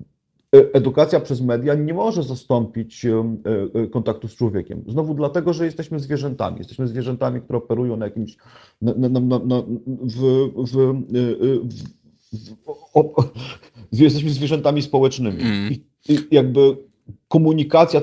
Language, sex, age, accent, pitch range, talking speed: Polish, male, 40-59, native, 115-135 Hz, 85 wpm